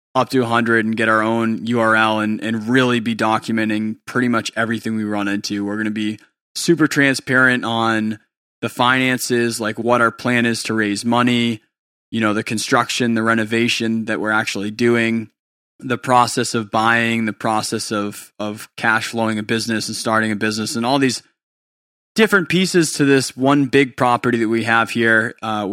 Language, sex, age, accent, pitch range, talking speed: English, male, 20-39, American, 105-125 Hz, 180 wpm